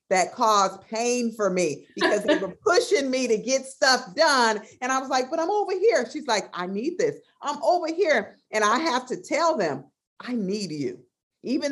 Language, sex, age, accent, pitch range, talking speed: English, female, 50-69, American, 180-240 Hz, 205 wpm